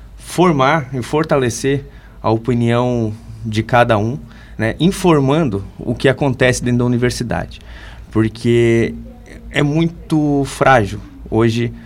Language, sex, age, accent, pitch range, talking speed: Portuguese, male, 20-39, Brazilian, 110-135 Hz, 105 wpm